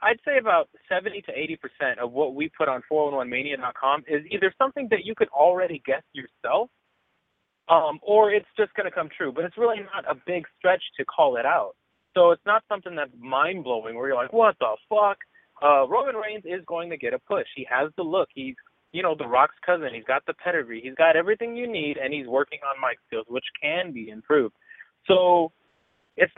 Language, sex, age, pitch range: English, male, 30-49, 135-215 Hz